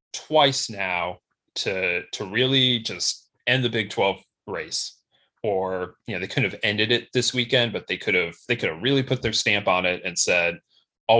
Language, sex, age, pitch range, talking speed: English, male, 30-49, 100-125 Hz, 200 wpm